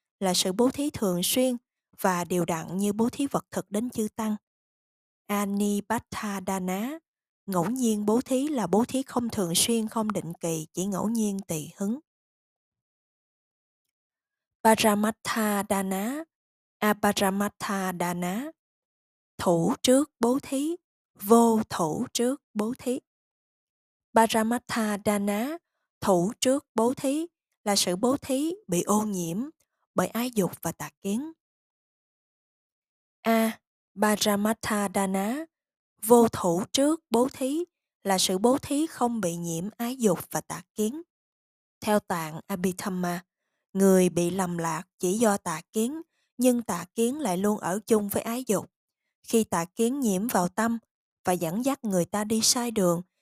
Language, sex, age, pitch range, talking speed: Vietnamese, female, 20-39, 190-240 Hz, 140 wpm